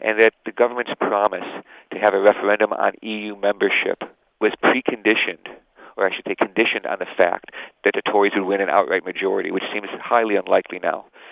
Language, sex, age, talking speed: English, male, 40-59, 185 wpm